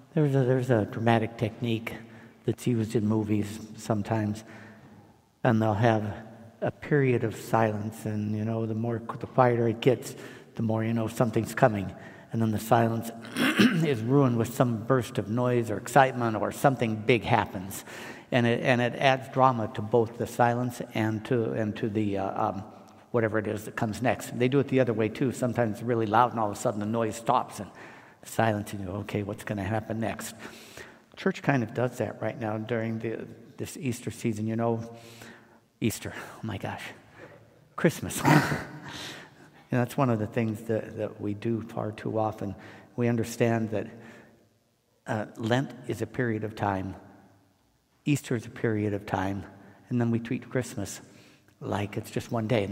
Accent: American